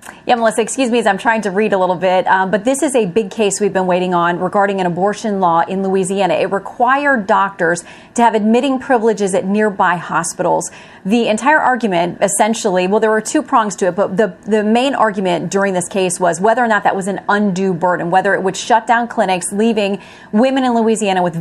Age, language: 30-49, English